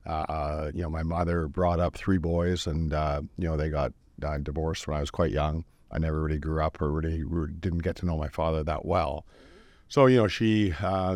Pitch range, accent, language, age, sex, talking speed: 75-90 Hz, American, English, 50-69, male, 230 wpm